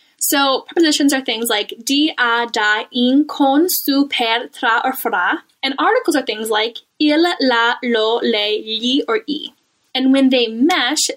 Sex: female